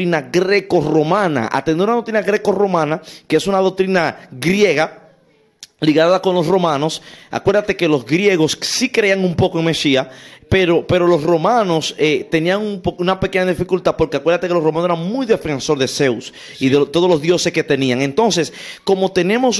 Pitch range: 145-185 Hz